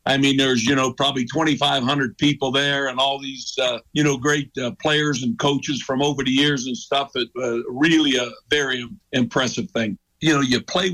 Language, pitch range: English, 130-145 Hz